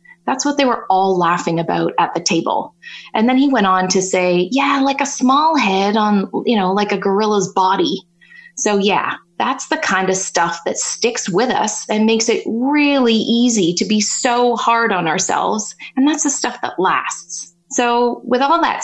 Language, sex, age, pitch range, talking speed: English, female, 20-39, 185-235 Hz, 195 wpm